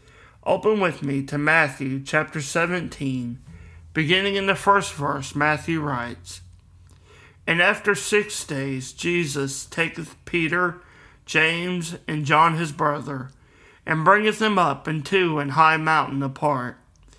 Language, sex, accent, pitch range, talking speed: English, male, American, 135-170 Hz, 125 wpm